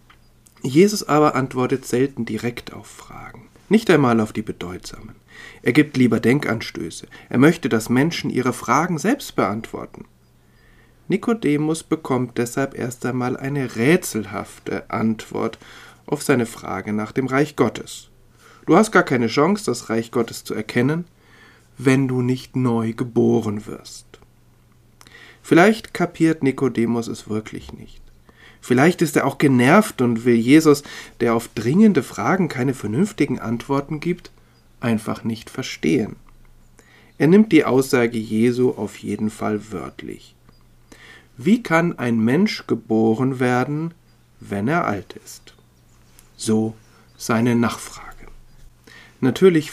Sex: male